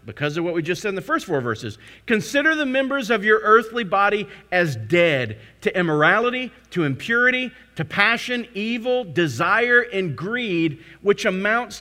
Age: 40-59